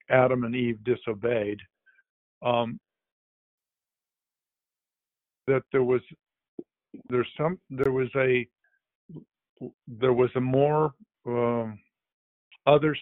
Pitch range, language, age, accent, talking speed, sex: 120-140 Hz, English, 50-69, American, 90 wpm, male